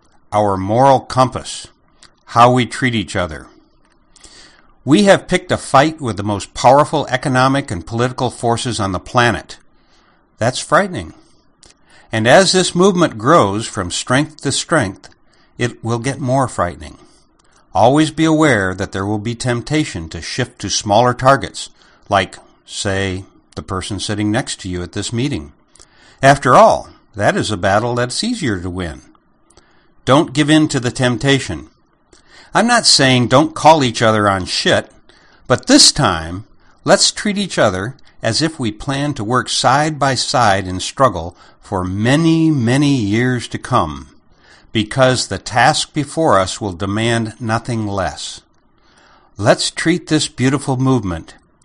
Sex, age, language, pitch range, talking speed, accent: male, 60-79, English, 95-135 Hz, 150 wpm, American